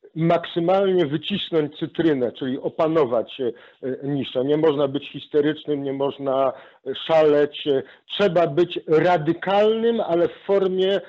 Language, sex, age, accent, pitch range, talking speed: Polish, male, 50-69, native, 155-190 Hz, 105 wpm